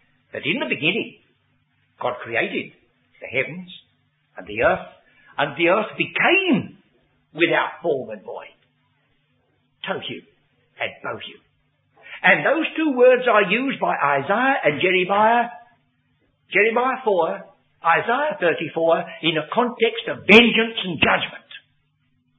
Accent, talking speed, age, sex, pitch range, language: British, 120 wpm, 60-79, male, 145-210 Hz, English